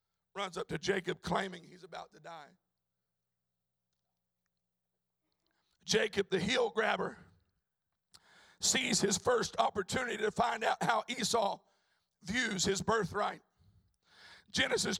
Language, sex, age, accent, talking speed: English, male, 50-69, American, 105 wpm